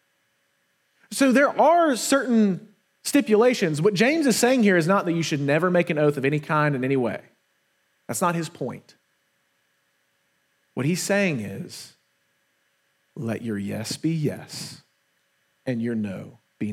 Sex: male